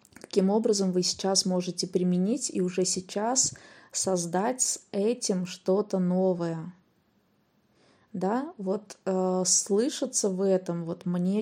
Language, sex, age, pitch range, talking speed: Russian, female, 20-39, 180-205 Hz, 115 wpm